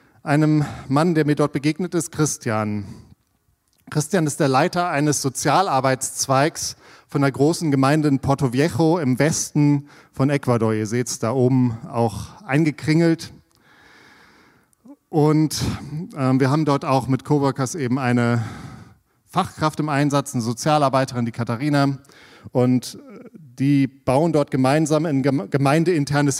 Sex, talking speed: male, 125 wpm